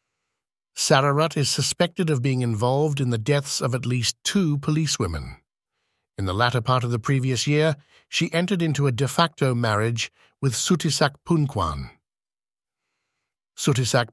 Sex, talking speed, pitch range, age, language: male, 140 wpm, 120-145 Hz, 60-79, English